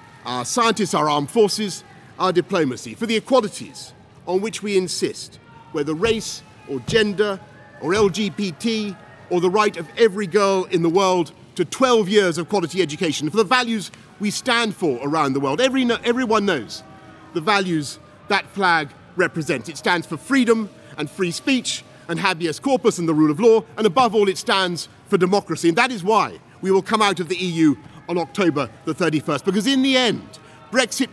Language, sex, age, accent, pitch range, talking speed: English, male, 40-59, British, 155-210 Hz, 180 wpm